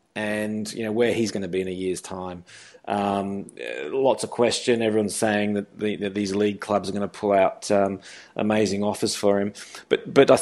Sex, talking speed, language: male, 215 wpm, English